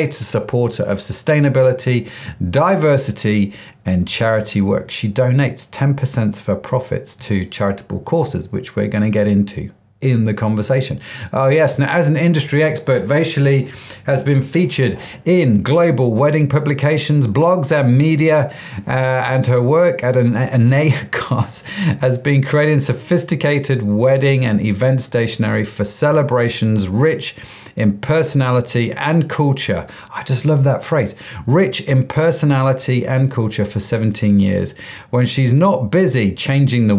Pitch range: 105-140 Hz